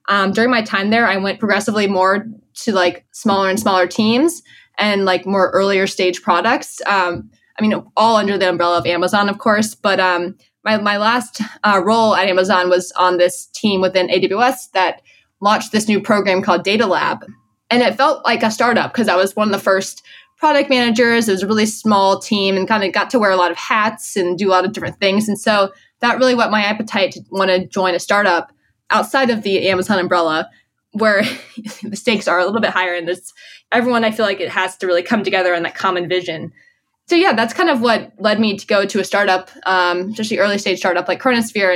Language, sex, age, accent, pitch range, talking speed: English, female, 20-39, American, 185-225 Hz, 225 wpm